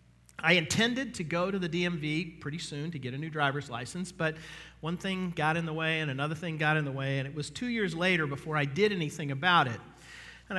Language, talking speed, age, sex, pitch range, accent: English, 240 wpm, 40-59, male, 145-185 Hz, American